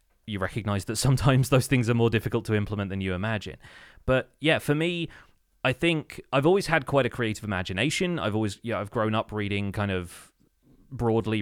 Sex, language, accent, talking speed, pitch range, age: male, English, British, 200 wpm, 100-120 Hz, 30-49